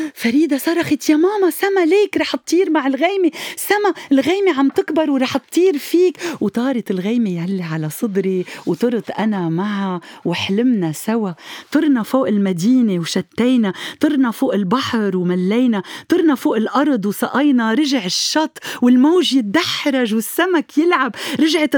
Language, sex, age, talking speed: Arabic, female, 40-59, 125 wpm